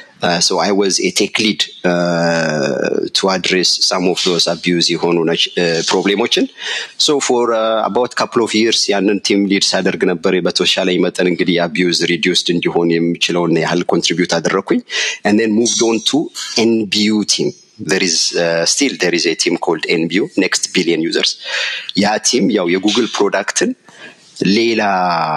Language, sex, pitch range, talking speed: Amharic, male, 85-110 Hz, 130 wpm